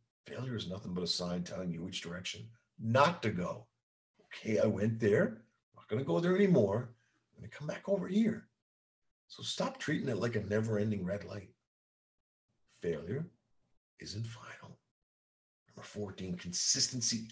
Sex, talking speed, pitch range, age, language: male, 160 wpm, 105-150 Hz, 50-69, English